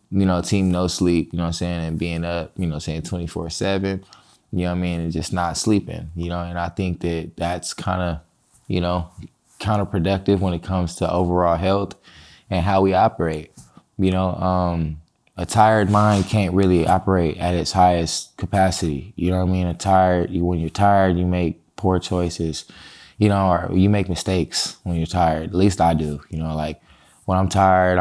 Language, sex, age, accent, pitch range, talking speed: English, male, 20-39, American, 85-95 Hz, 200 wpm